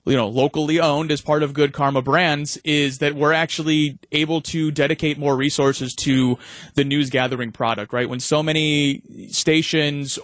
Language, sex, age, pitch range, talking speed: English, male, 30-49, 130-155 Hz, 170 wpm